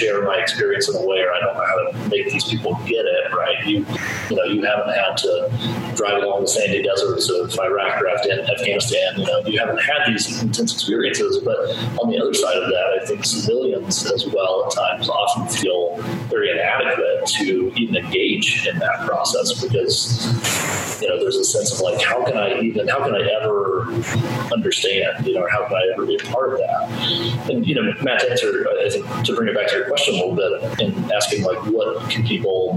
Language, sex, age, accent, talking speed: English, male, 30-49, American, 210 wpm